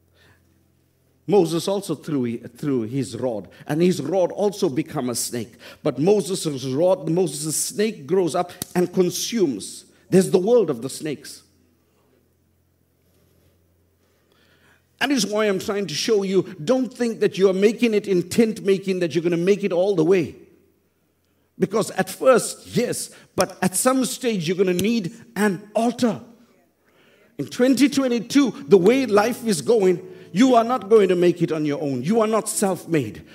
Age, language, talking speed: 50-69, English, 155 wpm